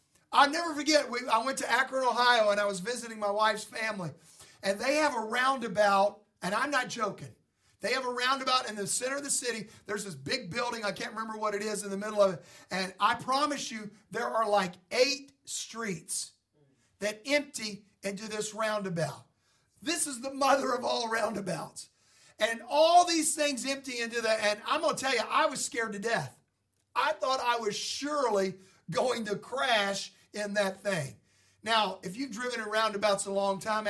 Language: English